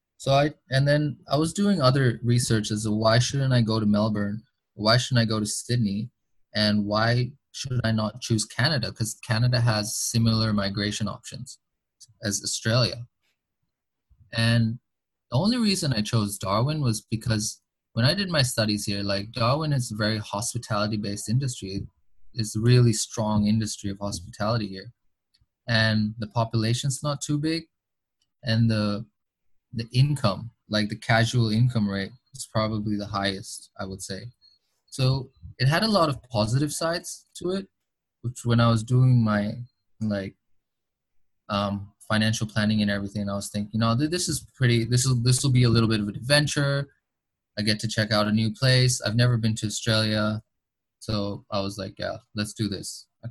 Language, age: English, 20-39